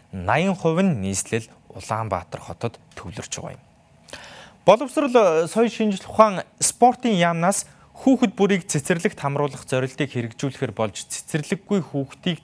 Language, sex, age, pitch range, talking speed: English, male, 20-39, 115-170 Hz, 115 wpm